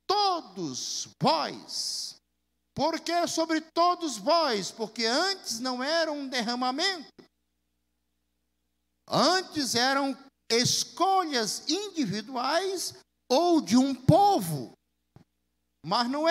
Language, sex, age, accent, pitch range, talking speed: Portuguese, male, 50-69, Brazilian, 200-315 Hz, 85 wpm